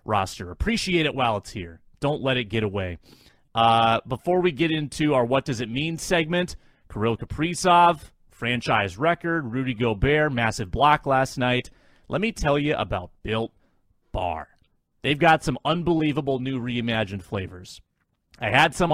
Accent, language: American, English